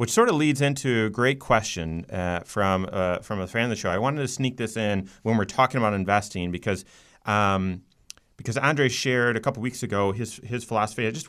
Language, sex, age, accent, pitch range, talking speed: English, male, 30-49, American, 95-120 Hz, 225 wpm